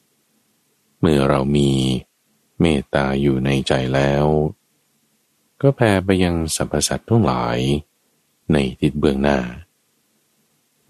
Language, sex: Thai, male